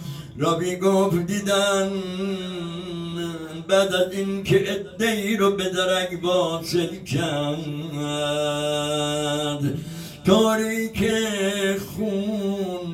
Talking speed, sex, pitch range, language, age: 60 wpm, male, 170-195 Hz, Persian, 60-79